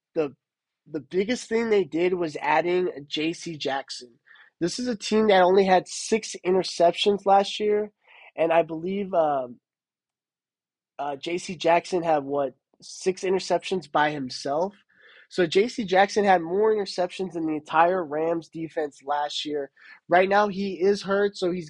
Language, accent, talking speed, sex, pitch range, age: English, American, 150 wpm, male, 155-190 Hz, 20-39